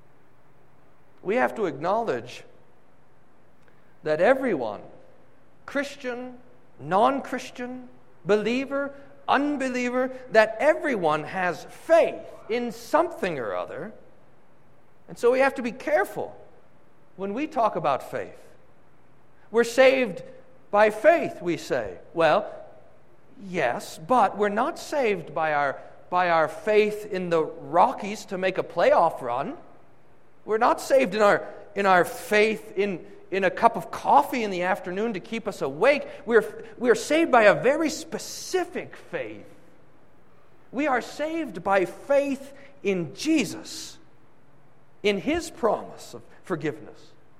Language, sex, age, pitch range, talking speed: English, male, 50-69, 180-265 Hz, 120 wpm